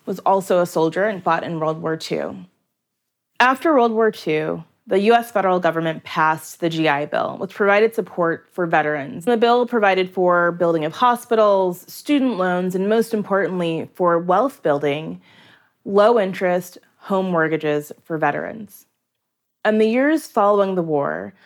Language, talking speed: English, 150 wpm